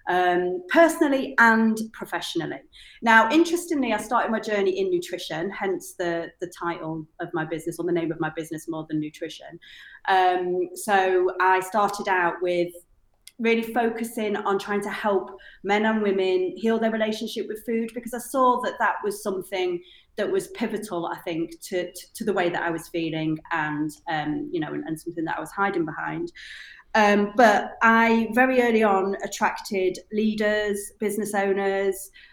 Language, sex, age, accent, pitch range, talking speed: English, female, 30-49, British, 180-230 Hz, 170 wpm